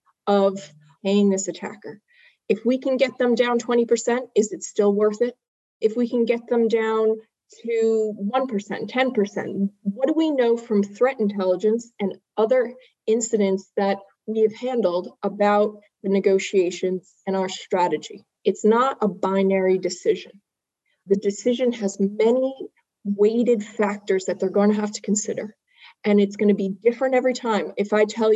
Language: English